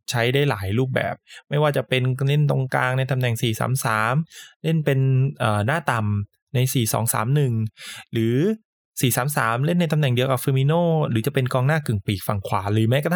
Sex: male